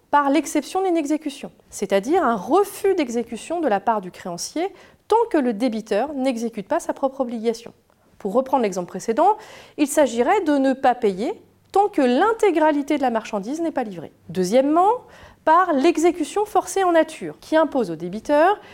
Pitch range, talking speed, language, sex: 230-335 Hz, 165 wpm, French, female